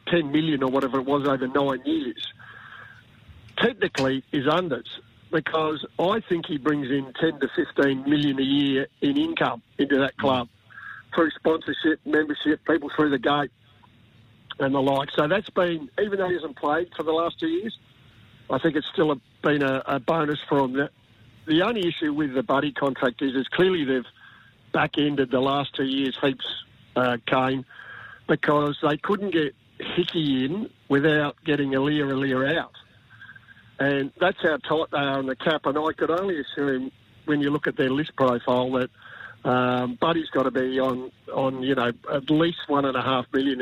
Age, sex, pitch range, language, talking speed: 50-69, male, 130-160 Hz, English, 180 wpm